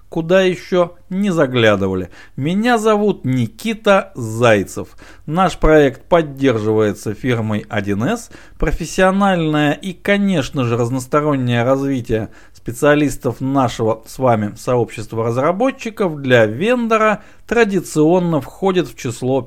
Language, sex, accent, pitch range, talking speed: Russian, male, native, 125-180 Hz, 95 wpm